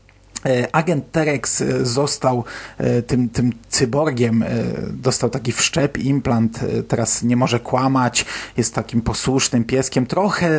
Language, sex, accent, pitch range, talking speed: Polish, male, native, 120-140 Hz, 110 wpm